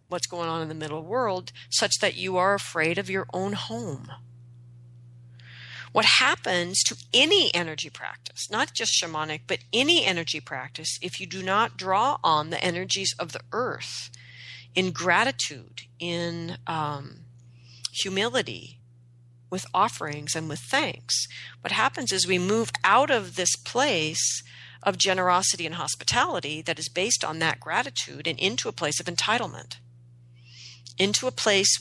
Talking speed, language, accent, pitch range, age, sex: 145 wpm, English, American, 120-190 Hz, 40-59, female